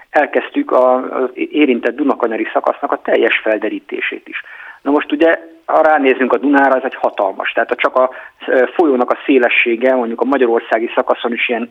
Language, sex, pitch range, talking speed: Hungarian, male, 115-150 Hz, 165 wpm